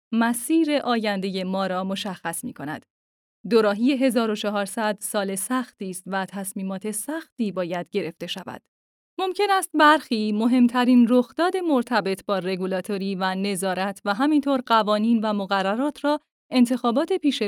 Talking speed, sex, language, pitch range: 125 wpm, female, Persian, 195-265 Hz